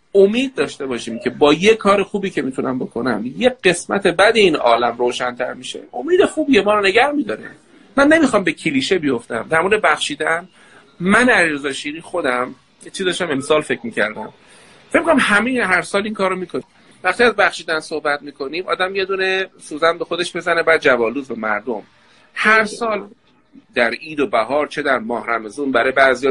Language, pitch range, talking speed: Persian, 130-205 Hz, 175 wpm